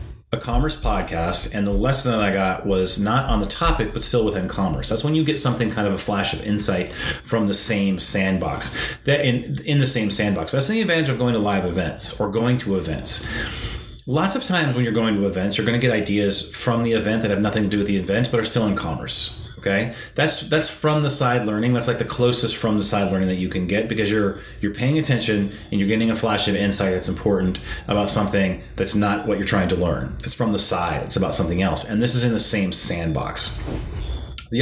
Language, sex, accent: English, male, American